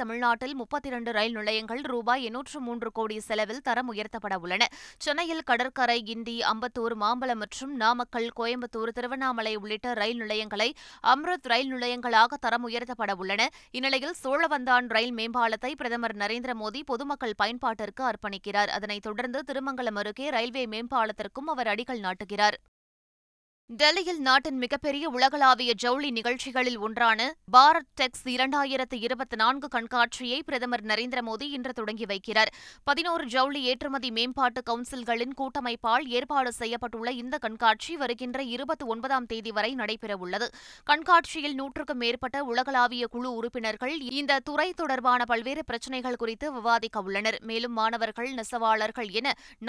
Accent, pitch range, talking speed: native, 225-265 Hz, 115 wpm